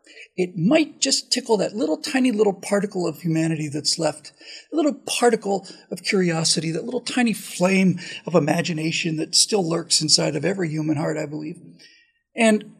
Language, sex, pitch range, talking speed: English, male, 160-265 Hz, 165 wpm